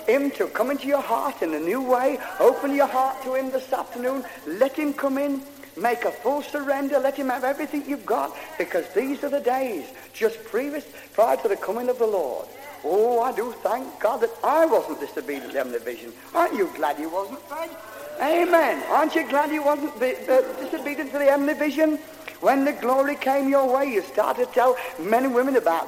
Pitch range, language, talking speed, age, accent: 215-290 Hz, English, 210 wpm, 60-79, British